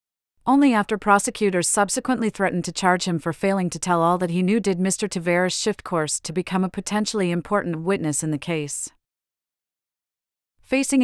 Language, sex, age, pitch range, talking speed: English, female, 40-59, 170-200 Hz, 170 wpm